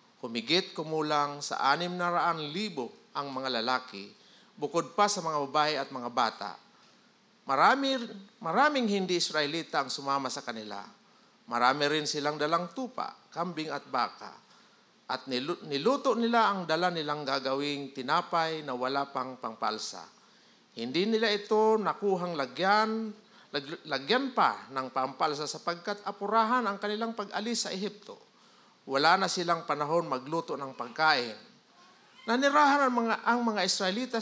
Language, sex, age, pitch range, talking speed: Filipino, male, 50-69, 145-215 Hz, 130 wpm